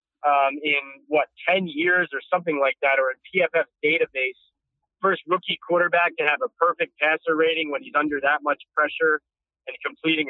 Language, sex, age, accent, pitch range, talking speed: English, male, 40-59, American, 150-185 Hz, 175 wpm